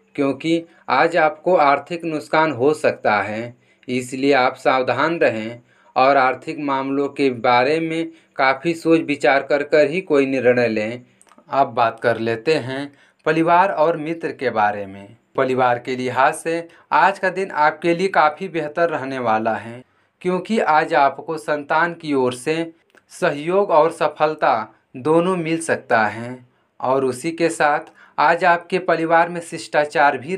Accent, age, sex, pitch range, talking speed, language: native, 40-59, male, 125-165 Hz, 150 wpm, Hindi